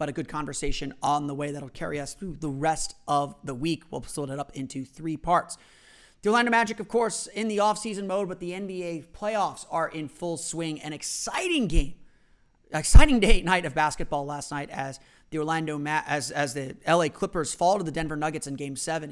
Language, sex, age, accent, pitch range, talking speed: English, male, 30-49, American, 145-185 Hz, 205 wpm